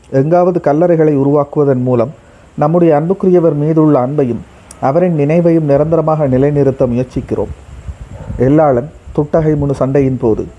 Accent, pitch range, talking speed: native, 125-155 Hz, 95 wpm